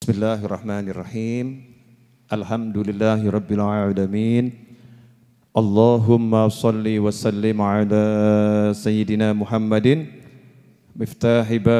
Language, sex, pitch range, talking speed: Indonesian, male, 105-120 Hz, 60 wpm